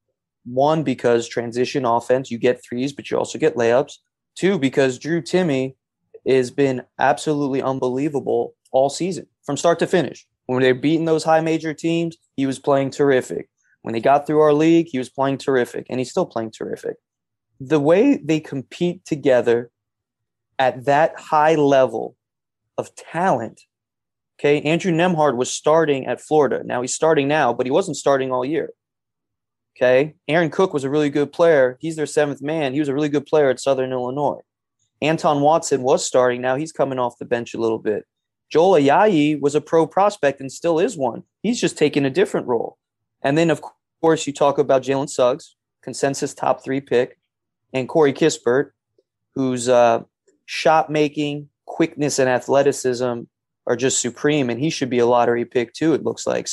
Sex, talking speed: male, 175 wpm